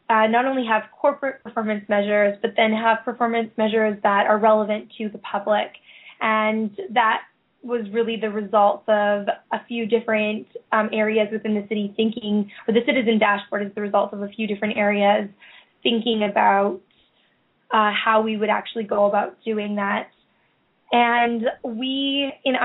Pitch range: 210-230 Hz